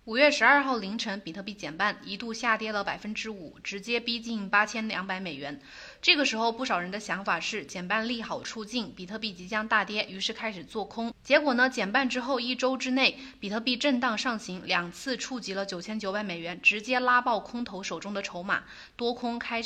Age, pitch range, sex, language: 20-39, 195-250 Hz, female, Chinese